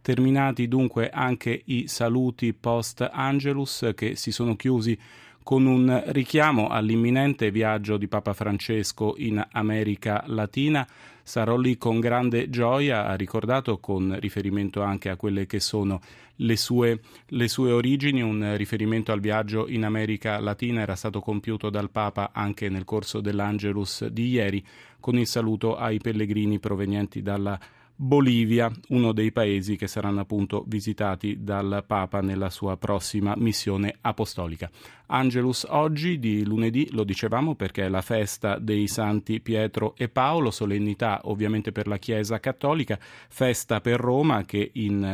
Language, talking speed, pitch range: Italian, 140 wpm, 105-120 Hz